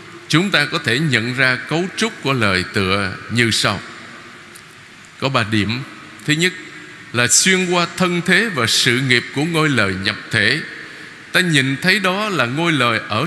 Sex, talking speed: male, 175 wpm